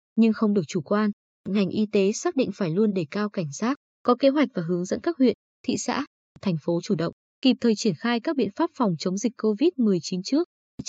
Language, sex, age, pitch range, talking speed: Vietnamese, female, 20-39, 185-240 Hz, 230 wpm